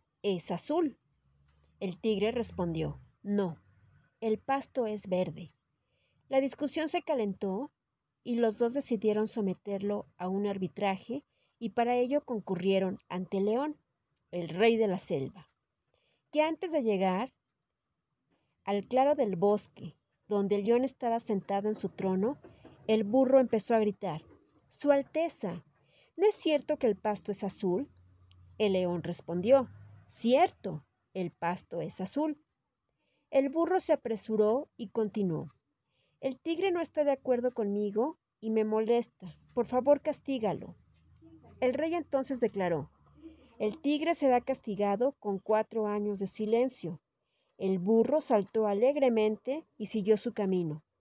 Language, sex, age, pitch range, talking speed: Spanish, female, 40-59, 185-260 Hz, 135 wpm